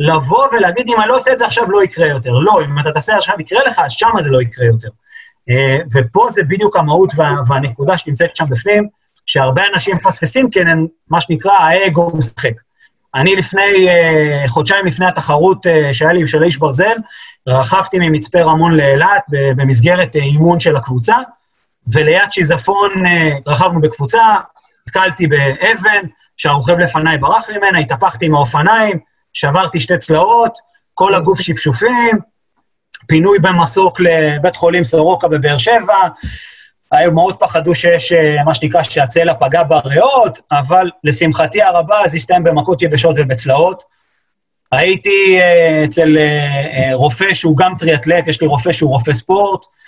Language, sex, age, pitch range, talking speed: Hebrew, male, 30-49, 150-185 Hz, 150 wpm